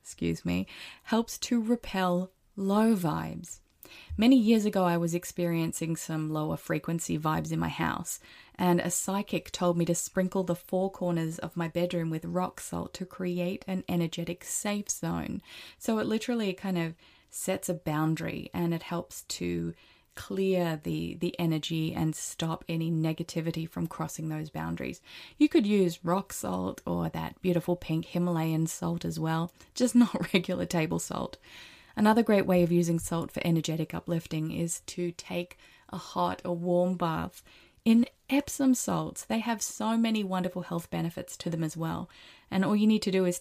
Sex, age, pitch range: female, 20-39, 160-190 Hz